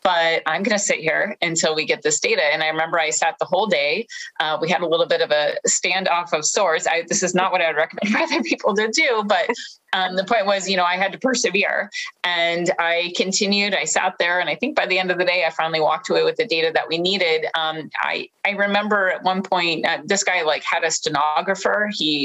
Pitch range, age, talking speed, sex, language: 165-200 Hz, 30-49, 250 wpm, female, English